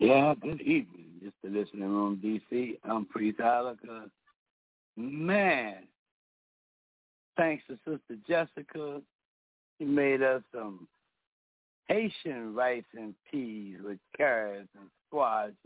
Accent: American